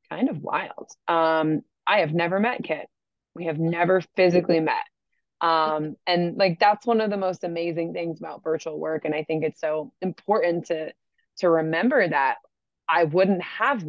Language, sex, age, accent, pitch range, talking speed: English, female, 20-39, American, 155-185 Hz, 175 wpm